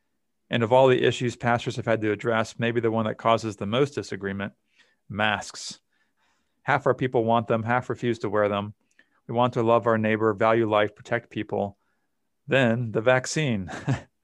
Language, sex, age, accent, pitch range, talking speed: English, male, 40-59, American, 110-130 Hz, 175 wpm